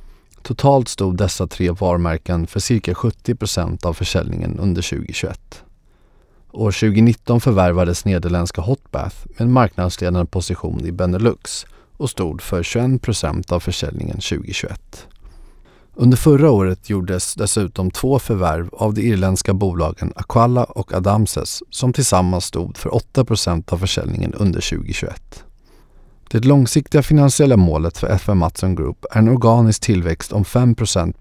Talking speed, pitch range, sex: 130 wpm, 90-115 Hz, male